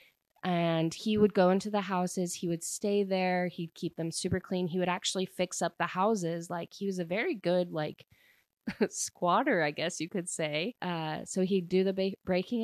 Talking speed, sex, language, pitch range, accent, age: 200 wpm, female, English, 165-190 Hz, American, 20-39